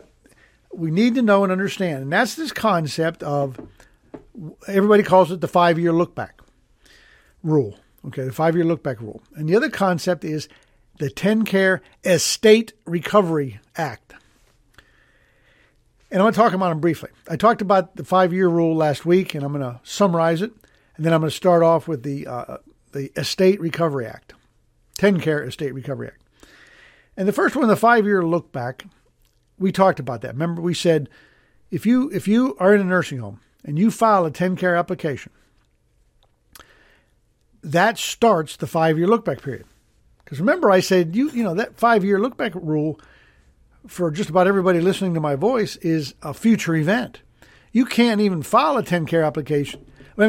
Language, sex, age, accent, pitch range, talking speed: English, male, 60-79, American, 150-205 Hz, 175 wpm